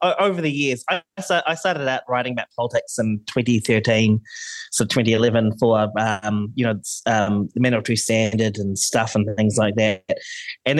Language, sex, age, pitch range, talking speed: English, male, 20-39, 115-145 Hz, 180 wpm